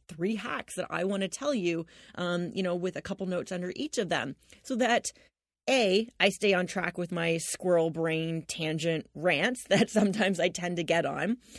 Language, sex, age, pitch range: English, female, 30-49, 175-220 Hz